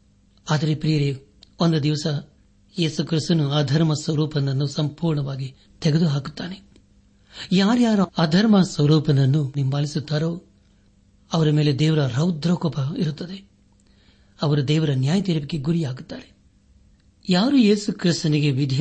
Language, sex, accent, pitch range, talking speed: Kannada, male, native, 130-160 Hz, 90 wpm